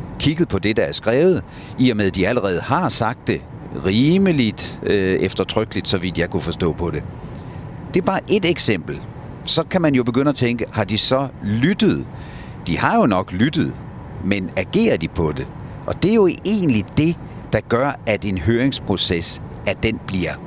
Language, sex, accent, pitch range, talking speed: Danish, male, native, 90-120 Hz, 190 wpm